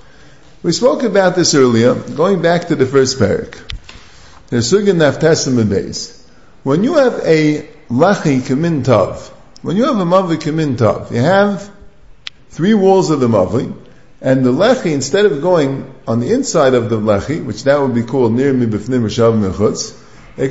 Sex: male